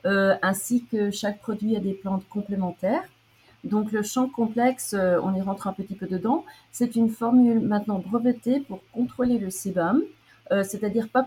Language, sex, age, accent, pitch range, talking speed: French, female, 40-59, French, 185-230 Hz, 175 wpm